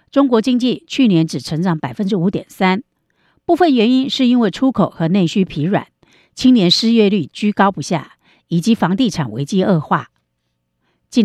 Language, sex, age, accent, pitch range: Chinese, female, 50-69, American, 165-245 Hz